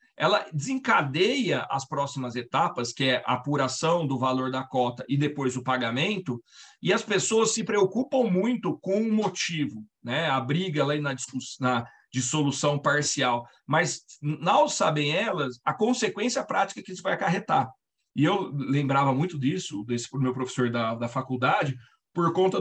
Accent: Brazilian